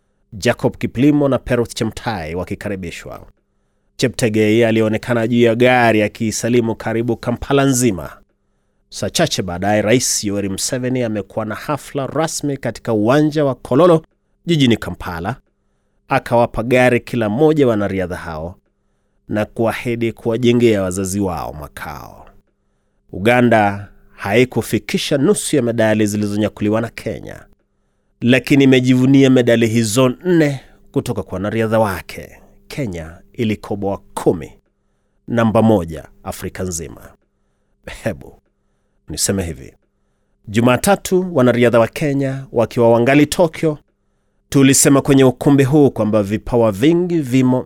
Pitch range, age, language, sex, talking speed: 105-130 Hz, 30-49, Swahili, male, 110 wpm